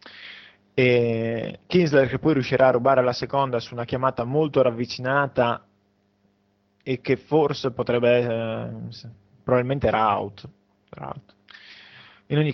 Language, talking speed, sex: Italian, 115 wpm, male